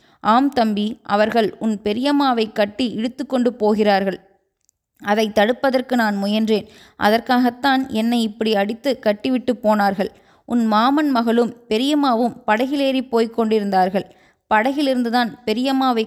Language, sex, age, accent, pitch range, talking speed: Tamil, female, 20-39, native, 215-255 Hz, 105 wpm